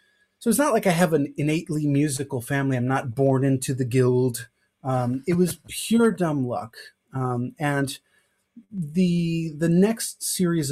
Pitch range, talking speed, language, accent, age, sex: 130-175 Hz, 155 wpm, English, American, 30-49, male